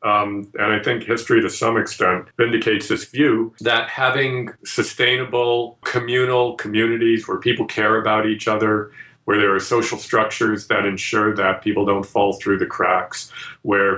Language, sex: English, male